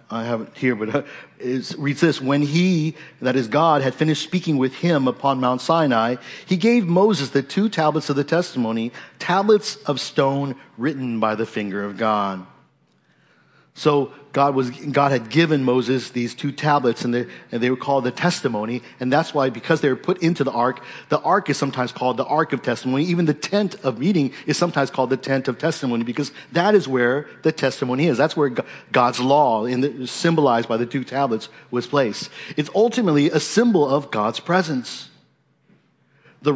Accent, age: American, 50-69